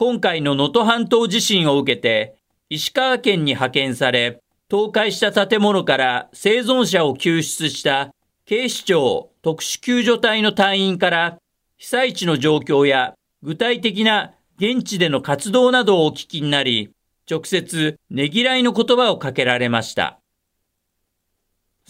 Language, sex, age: Japanese, male, 50-69